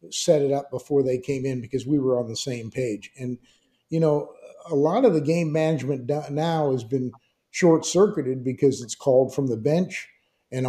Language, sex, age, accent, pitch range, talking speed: English, male, 50-69, American, 130-165 Hz, 195 wpm